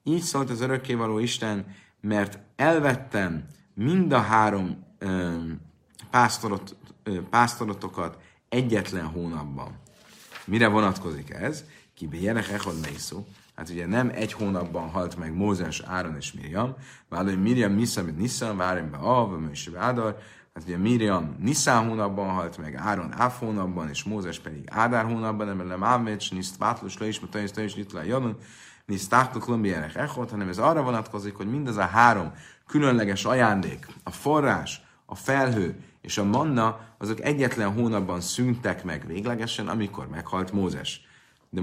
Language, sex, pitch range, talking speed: Hungarian, male, 95-120 Hz, 135 wpm